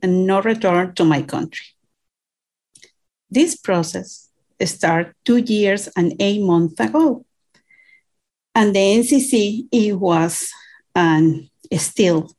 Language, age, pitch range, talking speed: English, 40-59, 175-230 Hz, 110 wpm